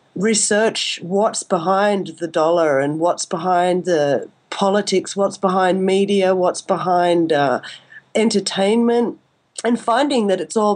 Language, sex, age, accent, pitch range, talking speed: English, female, 40-59, Australian, 180-220 Hz, 125 wpm